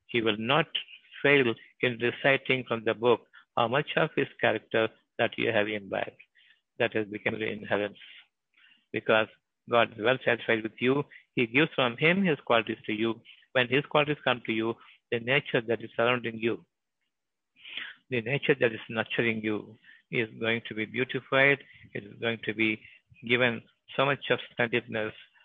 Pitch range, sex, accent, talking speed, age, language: 110-125 Hz, male, native, 165 wpm, 60-79, Tamil